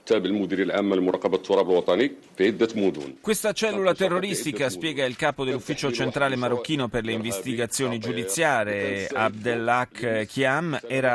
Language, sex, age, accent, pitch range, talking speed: Italian, male, 30-49, native, 110-145 Hz, 85 wpm